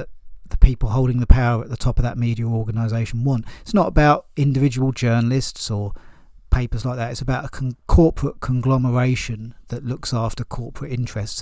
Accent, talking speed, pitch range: British, 170 wpm, 85-125 Hz